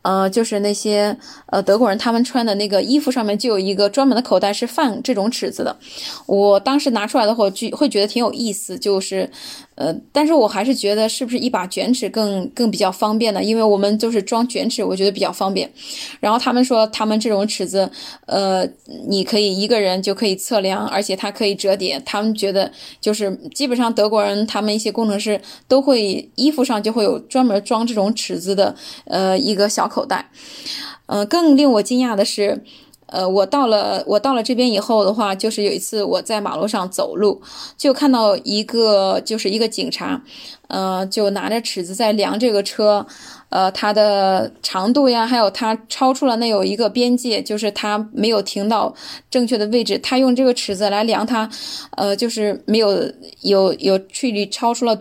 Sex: female